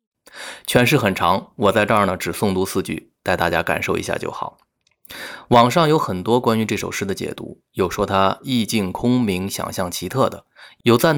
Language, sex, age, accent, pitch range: Chinese, male, 20-39, native, 100-135 Hz